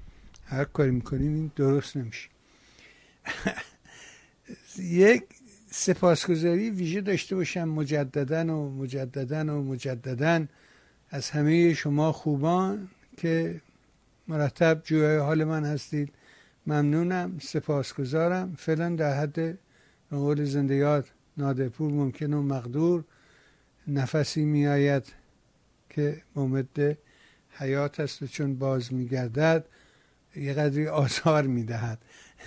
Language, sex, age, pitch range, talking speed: Persian, male, 60-79, 135-160 Hz, 90 wpm